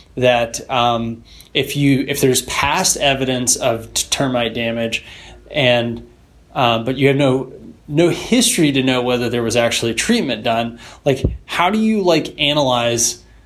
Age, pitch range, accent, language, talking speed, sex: 20-39, 120-150 Hz, American, English, 145 wpm, male